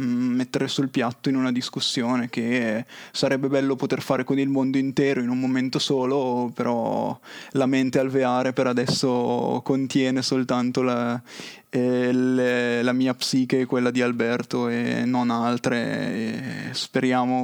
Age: 20-39